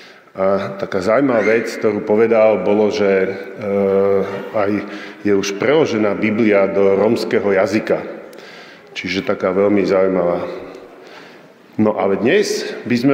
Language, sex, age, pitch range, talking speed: Slovak, male, 40-59, 100-125 Hz, 120 wpm